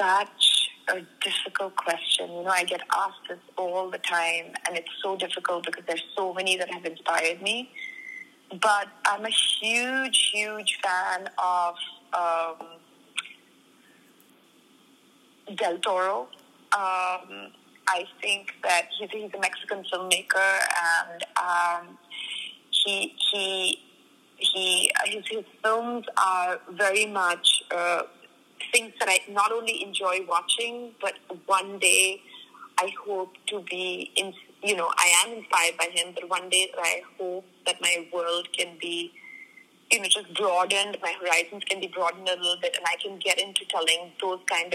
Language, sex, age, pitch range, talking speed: English, female, 20-39, 175-215 Hz, 140 wpm